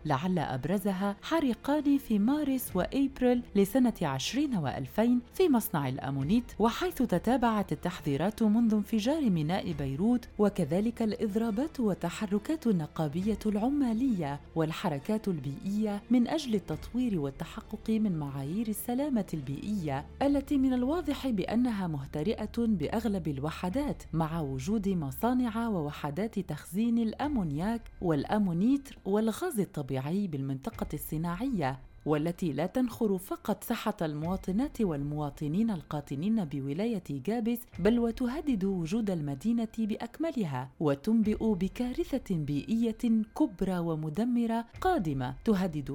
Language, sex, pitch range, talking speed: Arabic, female, 165-235 Hz, 95 wpm